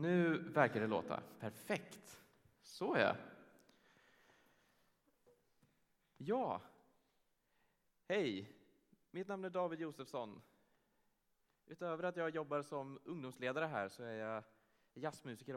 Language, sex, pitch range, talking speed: Swedish, male, 110-150 Hz, 100 wpm